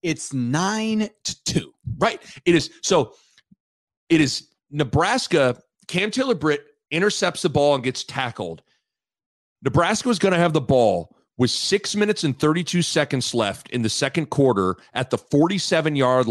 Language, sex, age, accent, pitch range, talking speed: English, male, 40-59, American, 135-185 Hz, 155 wpm